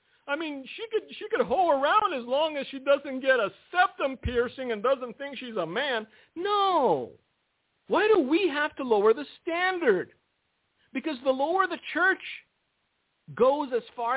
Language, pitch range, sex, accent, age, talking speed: English, 220-345 Hz, male, American, 50-69, 170 wpm